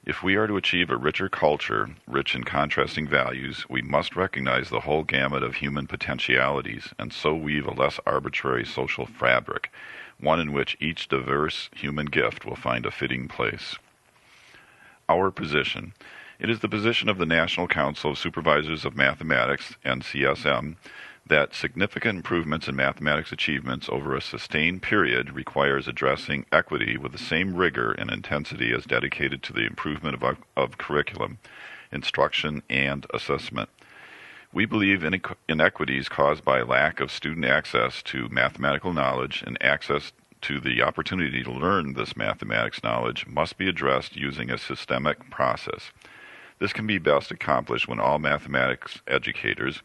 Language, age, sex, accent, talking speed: English, 50-69, male, American, 150 wpm